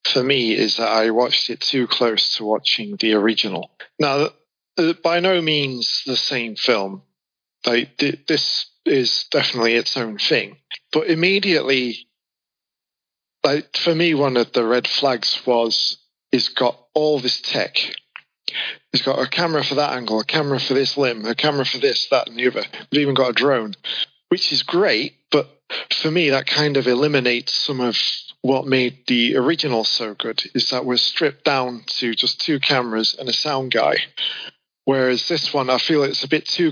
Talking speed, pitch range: 175 wpm, 120-150 Hz